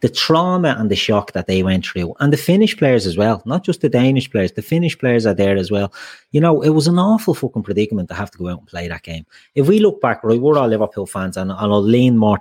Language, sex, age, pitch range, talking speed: English, male, 30-49, 95-130 Hz, 275 wpm